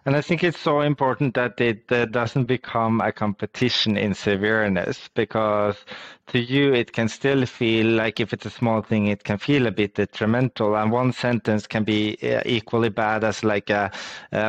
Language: English